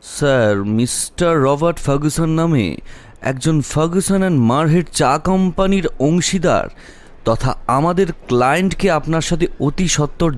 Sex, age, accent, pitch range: male, 30-49, Indian, 145-195 Hz